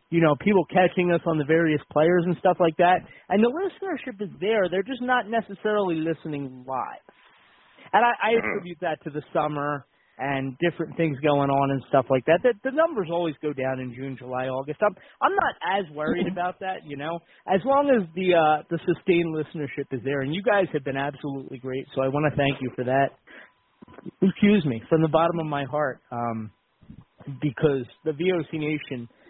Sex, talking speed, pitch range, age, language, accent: male, 200 wpm, 140-190 Hz, 30-49, English, American